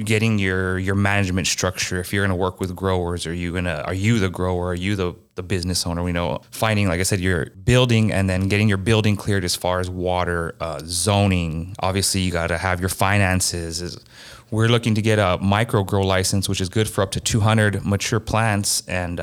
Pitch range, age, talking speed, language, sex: 95-110 Hz, 30-49, 220 wpm, English, male